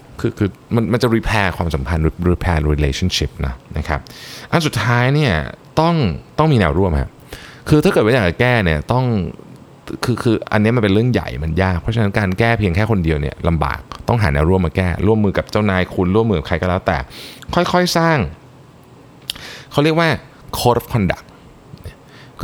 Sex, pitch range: male, 80-110 Hz